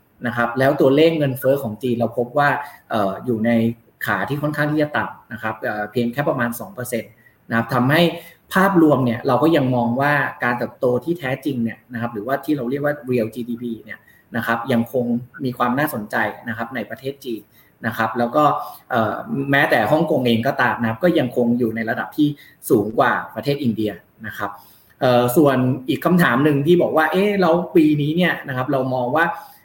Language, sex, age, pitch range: Thai, male, 20-39, 115-150 Hz